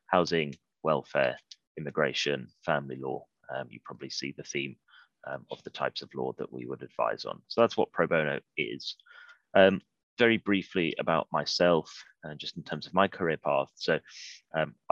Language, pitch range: Hungarian, 75-90 Hz